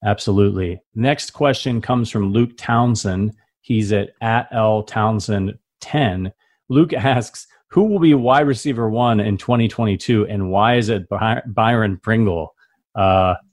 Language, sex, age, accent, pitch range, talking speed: English, male, 30-49, American, 100-120 Hz, 140 wpm